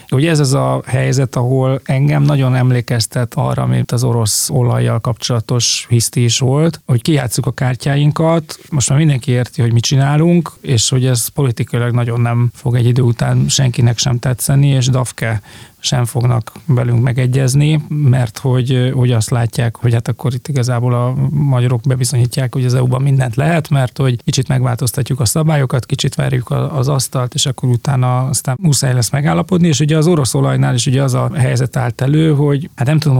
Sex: male